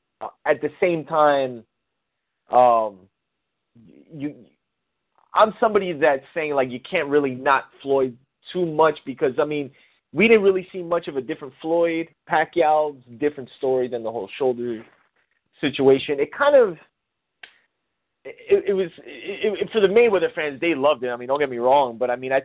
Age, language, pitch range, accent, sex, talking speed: 30-49, English, 125-165 Hz, American, male, 170 wpm